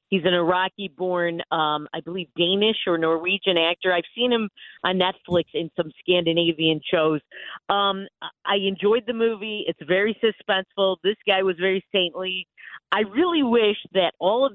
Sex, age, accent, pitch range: female, 40-59, American, 170-210 Hz